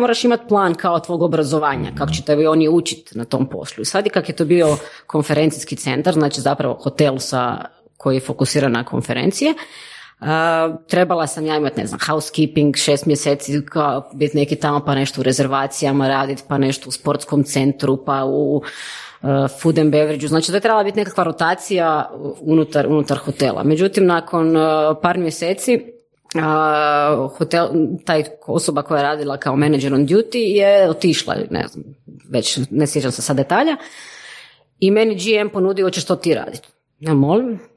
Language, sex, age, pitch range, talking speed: Croatian, female, 20-39, 145-180 Hz, 165 wpm